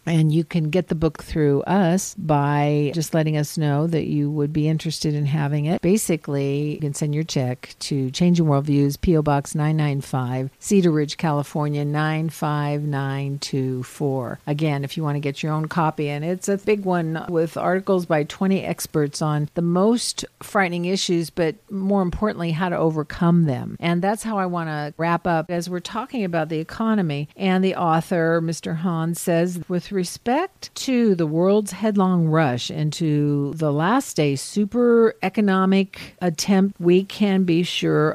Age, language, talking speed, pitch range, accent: 50-69, English, 165 wpm, 150-180 Hz, American